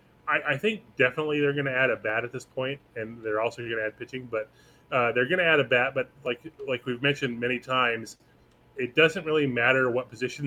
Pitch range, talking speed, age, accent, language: 120-140 Hz, 230 wpm, 30-49, American, English